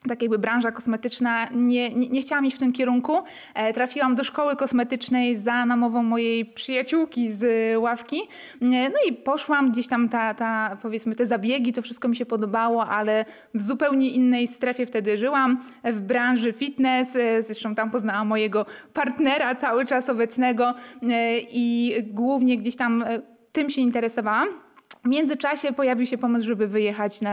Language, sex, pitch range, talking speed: Polish, female, 225-255 Hz, 145 wpm